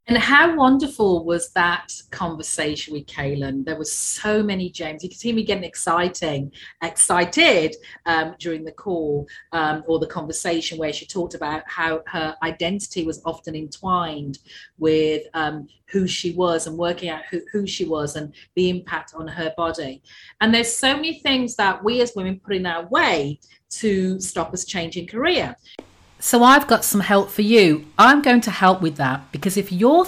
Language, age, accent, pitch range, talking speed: English, 40-59, British, 160-220 Hz, 180 wpm